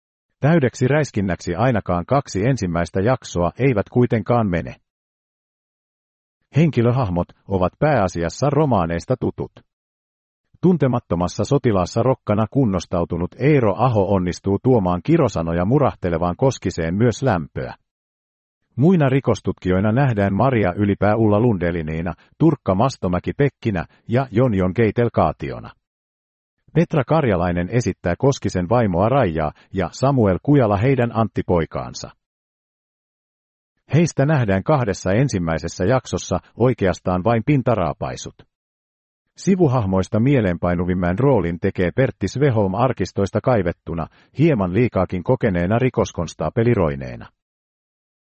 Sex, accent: male, native